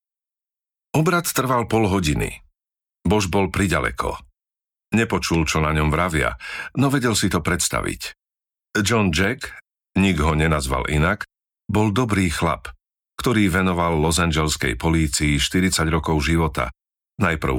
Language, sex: Slovak, male